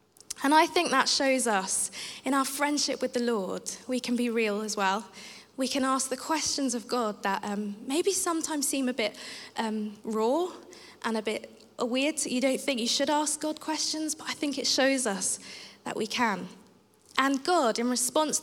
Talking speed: 195 wpm